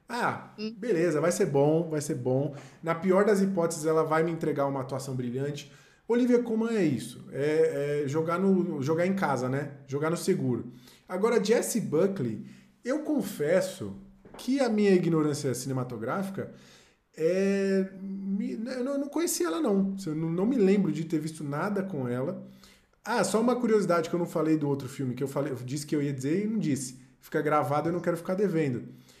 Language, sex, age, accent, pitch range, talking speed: Portuguese, male, 20-39, Brazilian, 140-190 Hz, 180 wpm